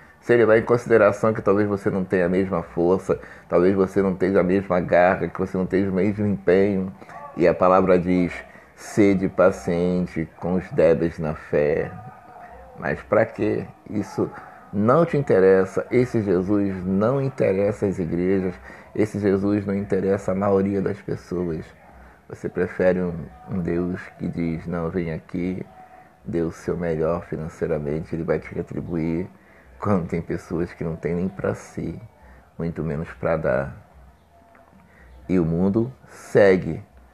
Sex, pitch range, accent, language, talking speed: male, 80-95 Hz, Brazilian, Portuguese, 150 wpm